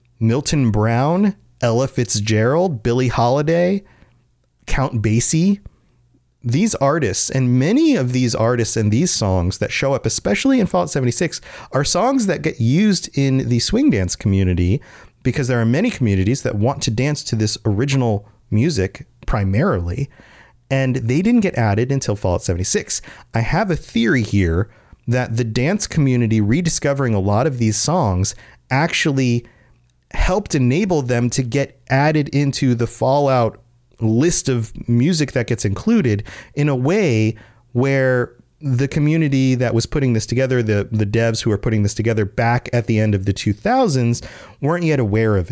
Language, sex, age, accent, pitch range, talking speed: English, male, 30-49, American, 110-140 Hz, 155 wpm